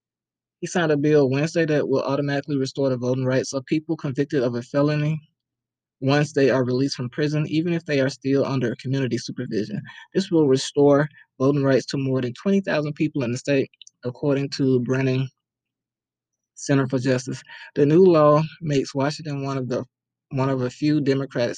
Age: 20-39